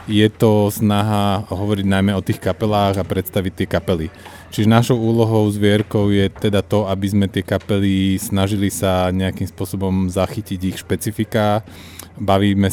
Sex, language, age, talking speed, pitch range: male, Slovak, 30-49, 145 wpm, 95-105 Hz